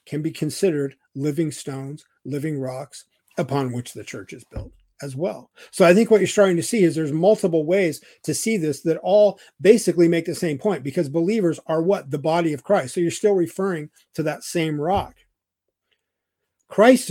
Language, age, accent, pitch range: English, 50-69, American, 140-180 Hz